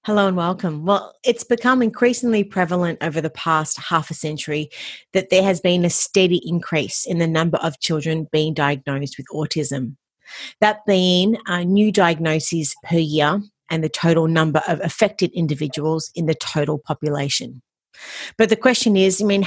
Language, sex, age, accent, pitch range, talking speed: English, female, 40-59, Australian, 155-190 Hz, 165 wpm